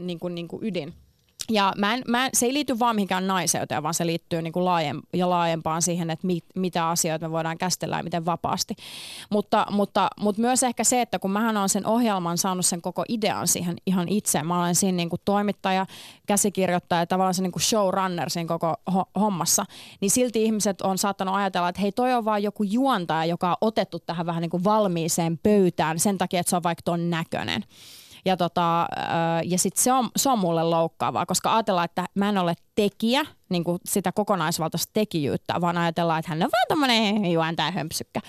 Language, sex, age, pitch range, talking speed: Finnish, female, 30-49, 170-205 Hz, 195 wpm